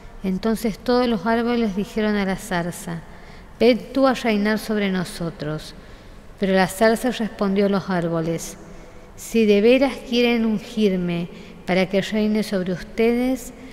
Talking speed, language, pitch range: 135 wpm, Spanish, 185-230 Hz